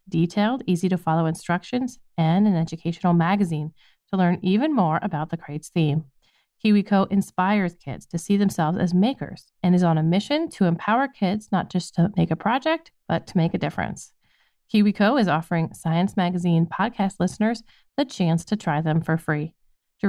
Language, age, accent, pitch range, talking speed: English, 30-49, American, 170-225 Hz, 175 wpm